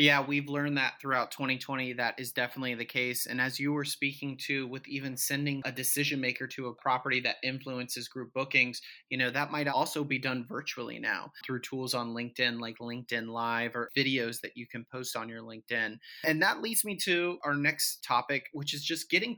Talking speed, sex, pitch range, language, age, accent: 205 wpm, male, 130-155 Hz, English, 30-49, American